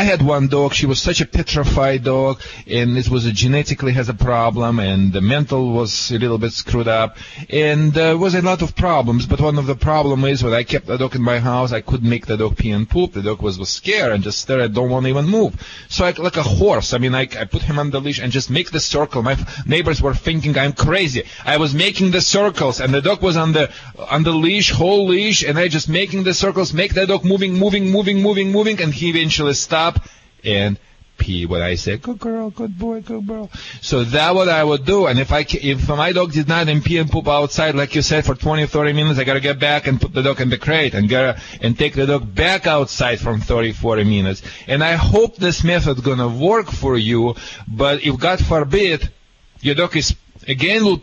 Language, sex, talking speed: English, male, 245 wpm